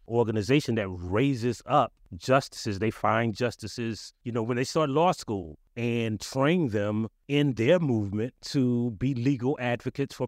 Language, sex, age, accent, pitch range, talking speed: English, male, 30-49, American, 105-125 Hz, 150 wpm